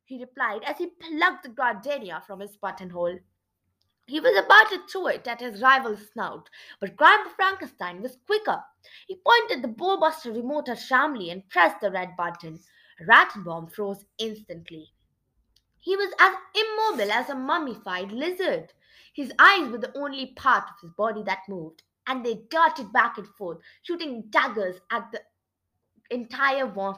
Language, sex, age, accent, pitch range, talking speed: English, female, 20-39, Indian, 200-310 Hz, 160 wpm